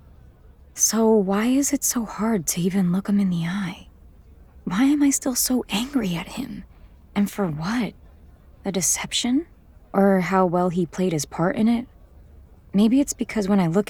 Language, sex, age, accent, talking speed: English, female, 20-39, American, 175 wpm